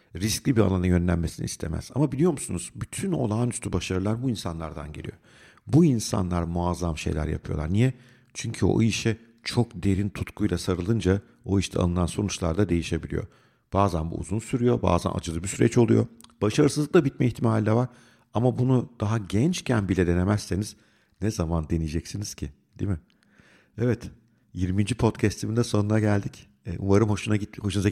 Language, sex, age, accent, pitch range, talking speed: Turkish, male, 50-69, native, 85-110 Hz, 155 wpm